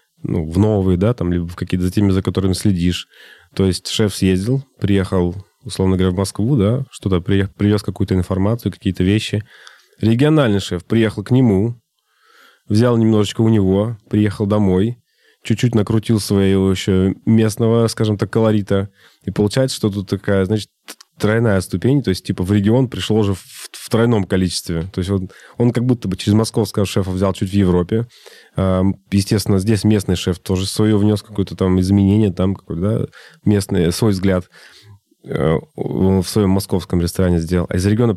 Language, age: Russian, 20-39